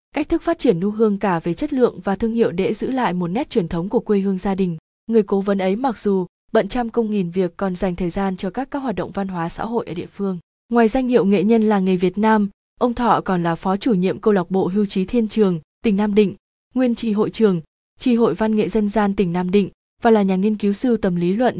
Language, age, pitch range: Vietnamese, 20-39, 185-230 Hz